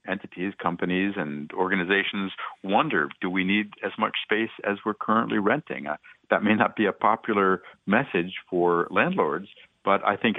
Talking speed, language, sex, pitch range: 160 wpm, English, male, 85-105 Hz